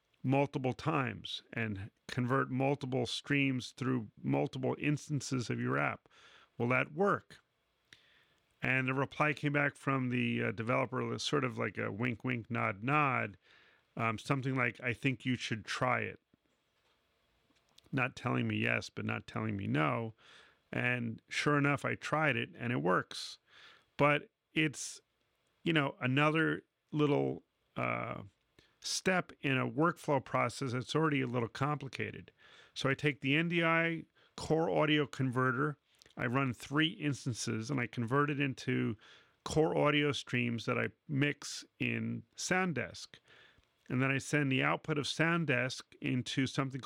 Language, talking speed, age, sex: English, 145 wpm, 40-59, male